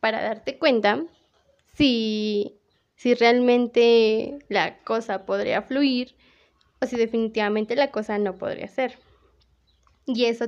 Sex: female